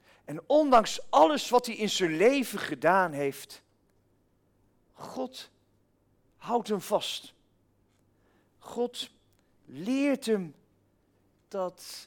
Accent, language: Dutch, English